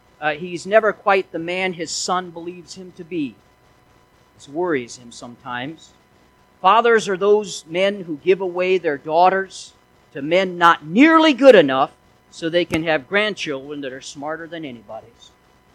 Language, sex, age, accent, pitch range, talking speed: English, male, 50-69, American, 155-210 Hz, 155 wpm